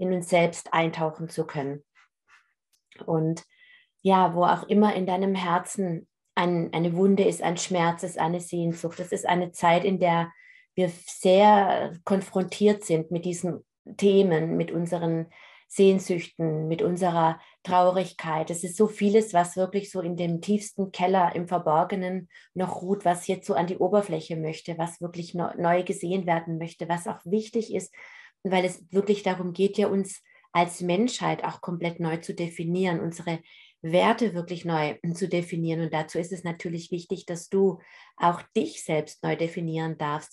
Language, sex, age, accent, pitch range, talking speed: German, female, 30-49, German, 170-195 Hz, 160 wpm